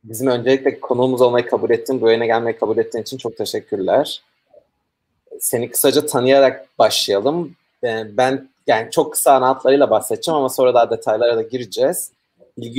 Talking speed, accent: 140 wpm, native